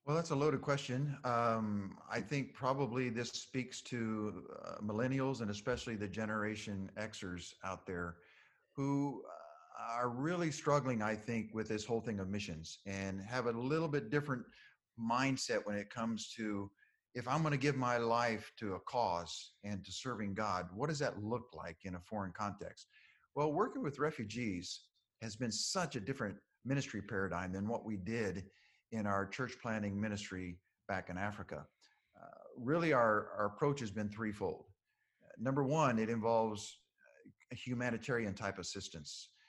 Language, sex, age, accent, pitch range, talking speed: English, male, 50-69, American, 100-125 Hz, 165 wpm